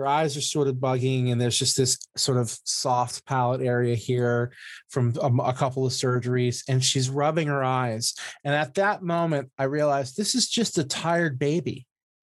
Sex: male